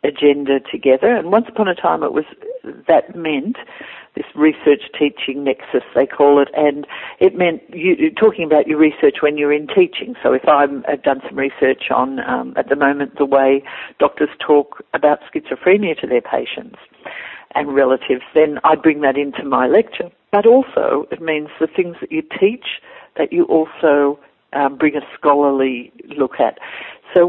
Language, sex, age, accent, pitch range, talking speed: English, female, 60-79, Australian, 150-215 Hz, 180 wpm